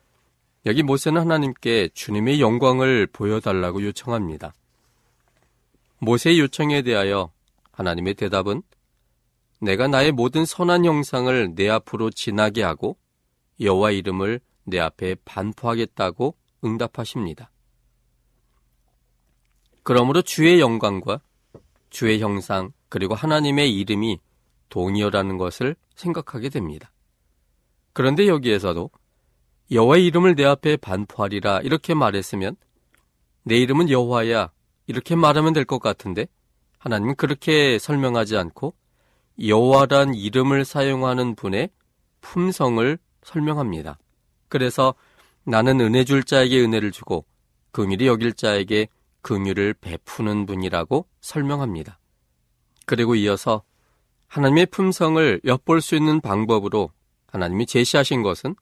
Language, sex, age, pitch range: Korean, male, 40-59, 95-140 Hz